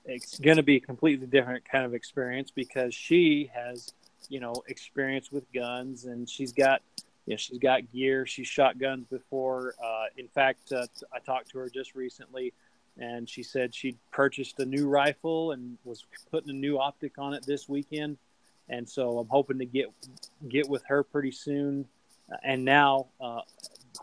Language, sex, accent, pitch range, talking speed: English, male, American, 125-140 Hz, 185 wpm